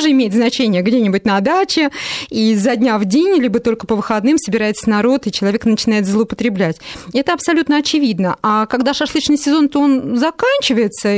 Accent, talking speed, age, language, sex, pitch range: native, 165 wpm, 20-39, Russian, female, 215-275 Hz